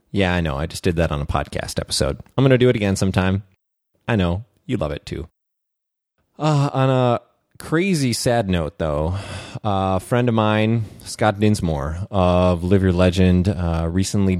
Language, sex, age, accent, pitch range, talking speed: English, male, 30-49, American, 90-105 Hz, 180 wpm